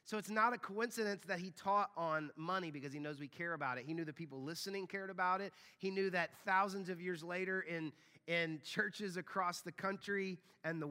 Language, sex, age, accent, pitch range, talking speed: English, male, 30-49, American, 150-190 Hz, 220 wpm